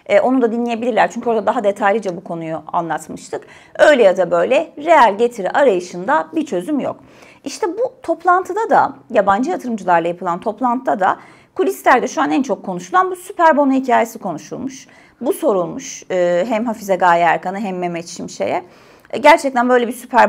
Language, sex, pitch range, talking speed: Turkish, female, 215-320 Hz, 155 wpm